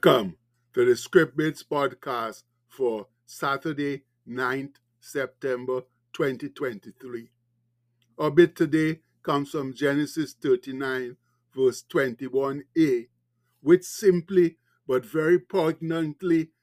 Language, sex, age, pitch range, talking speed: English, male, 60-79, 130-175 Hz, 85 wpm